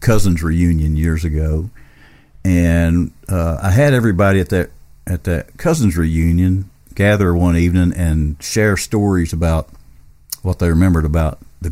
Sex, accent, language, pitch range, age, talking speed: male, American, English, 75-100 Hz, 50-69, 140 wpm